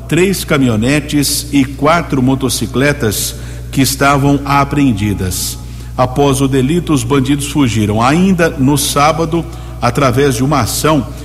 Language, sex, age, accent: Portuguese, male, 50-69, Brazilian